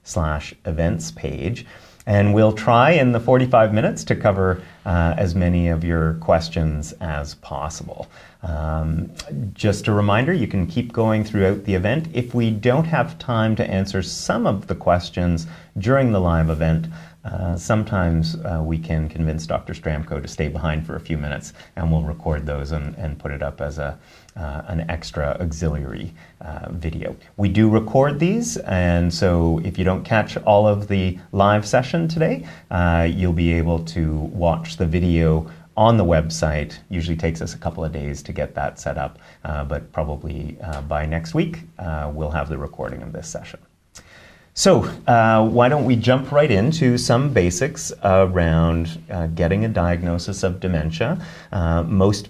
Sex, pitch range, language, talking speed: male, 80-105 Hz, English, 175 wpm